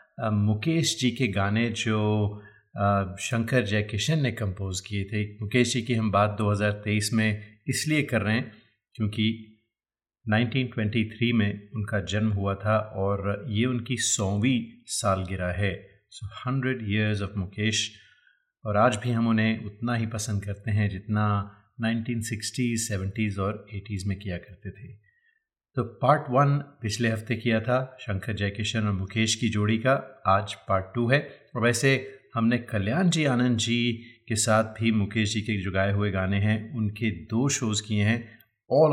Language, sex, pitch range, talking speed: Hindi, male, 105-120 Hz, 155 wpm